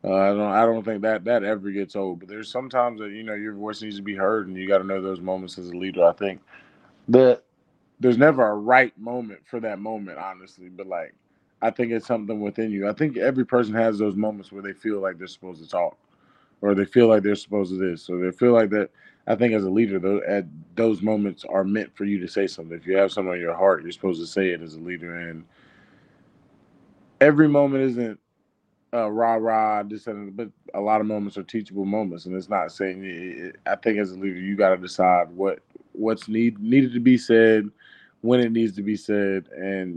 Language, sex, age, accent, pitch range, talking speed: English, male, 20-39, American, 95-110 Hz, 235 wpm